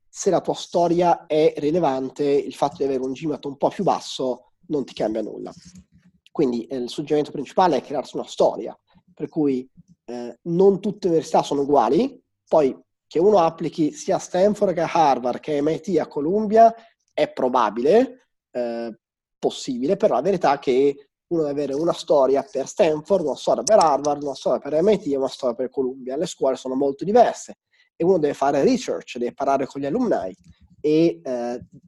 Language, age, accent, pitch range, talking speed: Italian, 30-49, native, 135-190 Hz, 180 wpm